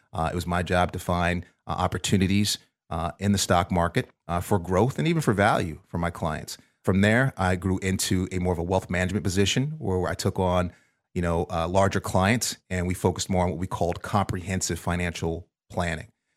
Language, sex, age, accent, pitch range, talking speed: English, male, 30-49, American, 85-100 Hz, 205 wpm